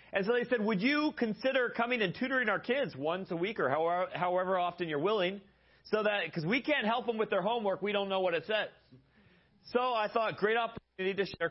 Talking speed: 225 wpm